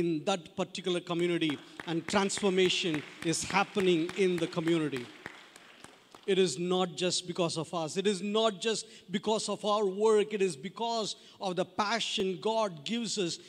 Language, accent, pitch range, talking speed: English, Indian, 170-210 Hz, 155 wpm